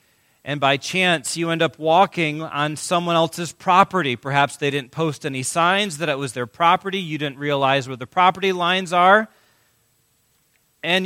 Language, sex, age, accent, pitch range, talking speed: English, male, 40-59, American, 115-190 Hz, 170 wpm